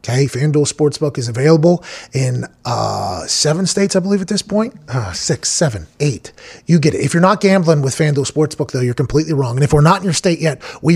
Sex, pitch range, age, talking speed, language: male, 155-200 Hz, 30-49, 225 wpm, English